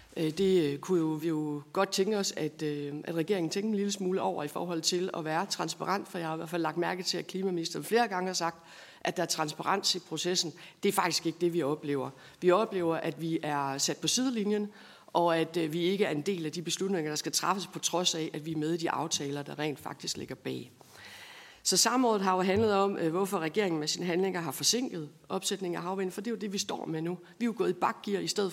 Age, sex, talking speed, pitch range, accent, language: 60-79, female, 245 wpm, 165-200 Hz, native, Danish